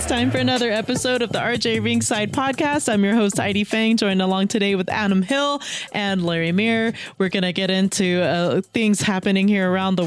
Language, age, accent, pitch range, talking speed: English, 30-49, American, 165-195 Hz, 210 wpm